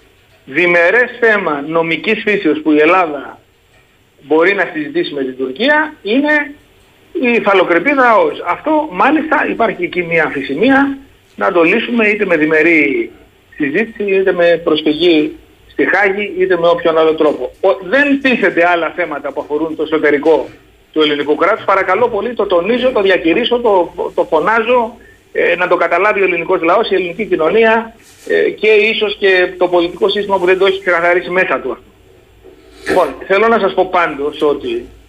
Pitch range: 160-245 Hz